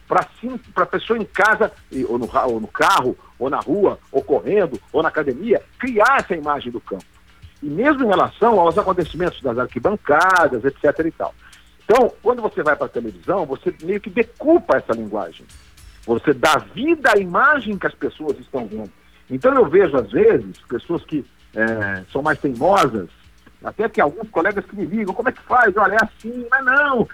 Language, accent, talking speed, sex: Portuguese, Brazilian, 185 wpm, male